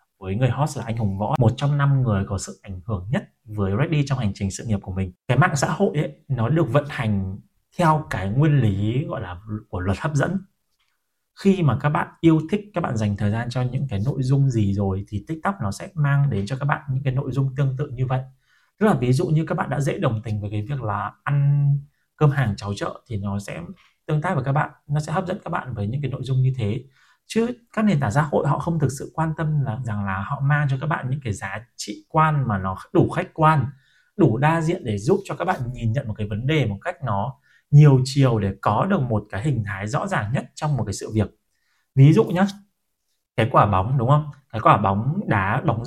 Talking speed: 260 wpm